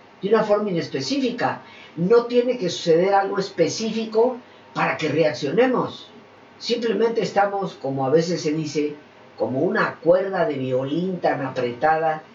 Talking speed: 130 wpm